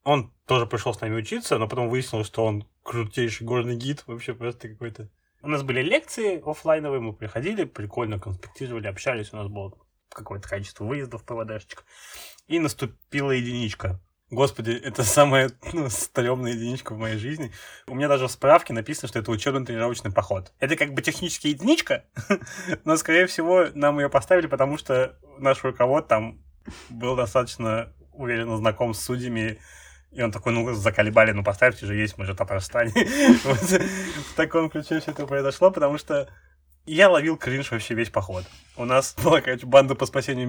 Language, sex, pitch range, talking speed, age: Russian, male, 110-140 Hz, 165 wpm, 20-39